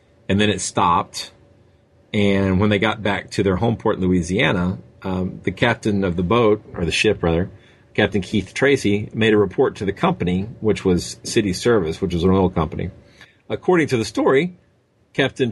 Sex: male